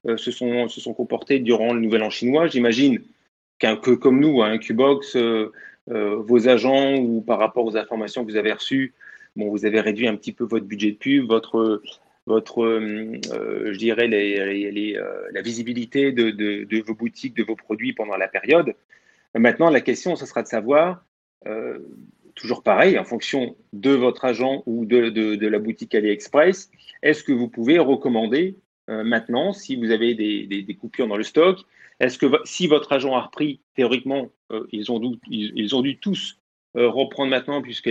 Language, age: French, 30-49